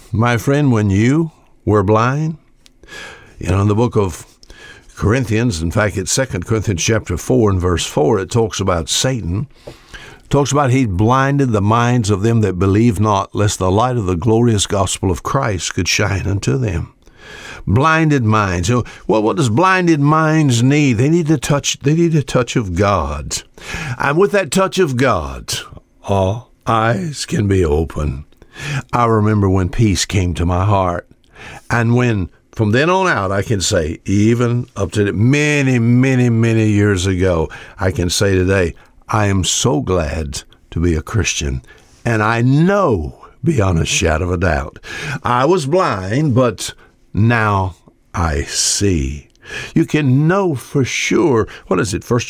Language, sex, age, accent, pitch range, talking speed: English, male, 60-79, American, 95-130 Hz, 165 wpm